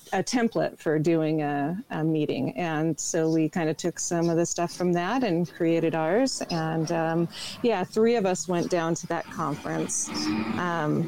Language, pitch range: English, 165-200 Hz